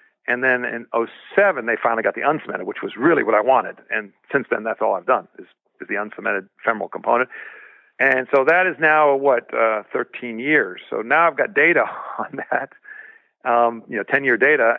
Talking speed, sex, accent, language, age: 200 wpm, male, American, English, 50-69